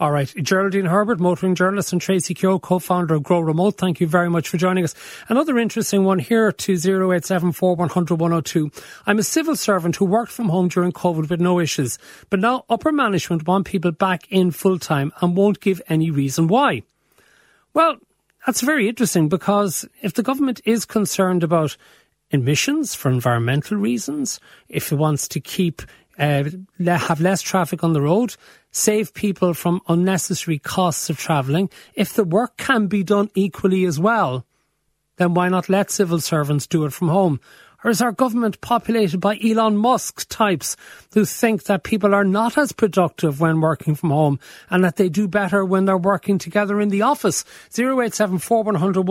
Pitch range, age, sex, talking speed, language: 170-210 Hz, 40-59, male, 180 wpm, English